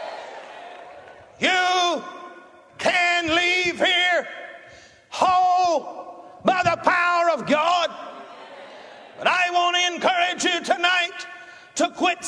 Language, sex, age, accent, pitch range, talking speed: English, male, 50-69, American, 310-360 Hz, 95 wpm